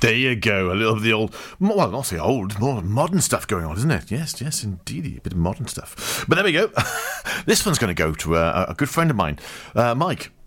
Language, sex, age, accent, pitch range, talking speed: English, male, 40-59, British, 90-135 Hz, 260 wpm